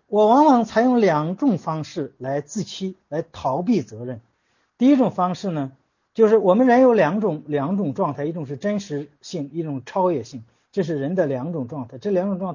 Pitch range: 145-230 Hz